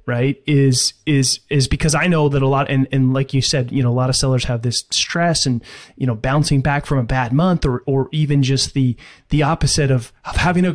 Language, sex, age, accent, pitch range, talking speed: English, male, 30-49, American, 125-145 Hz, 245 wpm